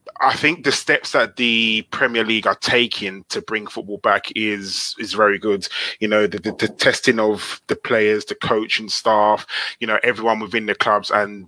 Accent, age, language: British, 20-39, English